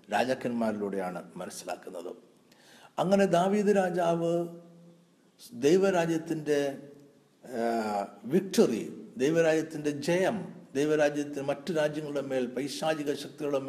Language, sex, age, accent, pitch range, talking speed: Malayalam, male, 60-79, native, 120-180 Hz, 65 wpm